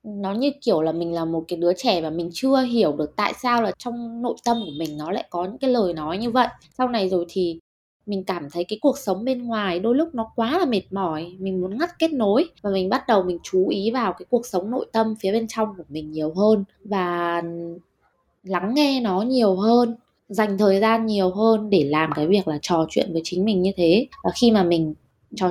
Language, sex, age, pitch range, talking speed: Vietnamese, female, 20-39, 175-230 Hz, 245 wpm